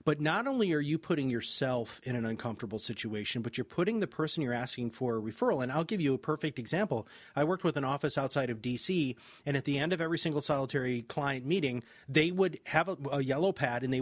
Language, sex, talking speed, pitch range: English, male, 235 wpm, 130-170 Hz